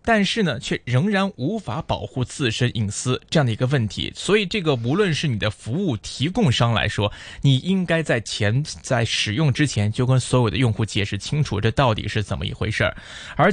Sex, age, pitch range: male, 20-39, 110-155 Hz